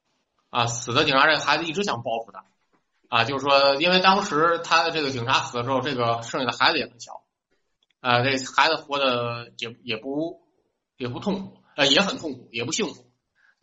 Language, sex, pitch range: Chinese, male, 115-155 Hz